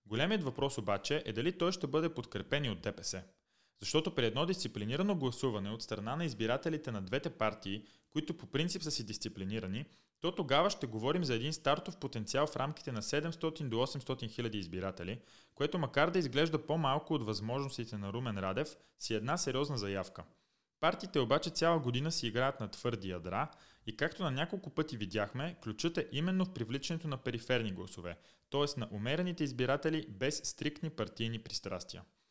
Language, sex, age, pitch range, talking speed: Bulgarian, male, 30-49, 110-155 Hz, 165 wpm